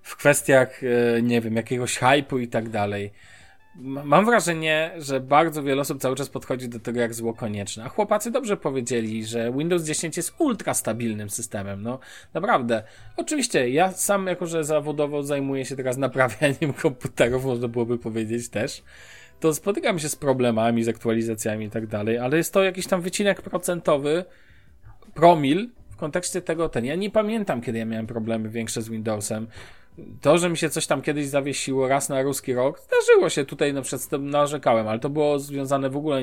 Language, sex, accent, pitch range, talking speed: Polish, male, native, 115-155 Hz, 180 wpm